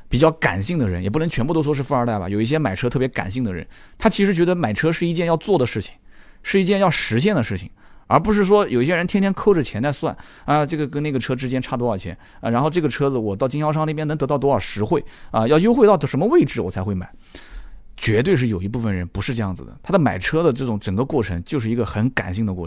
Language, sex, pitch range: Chinese, male, 105-165 Hz